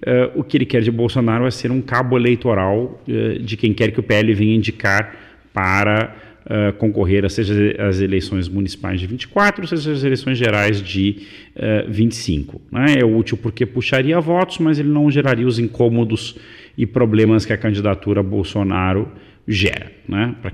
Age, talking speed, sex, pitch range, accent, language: 40-59, 160 wpm, male, 95-125 Hz, Brazilian, Portuguese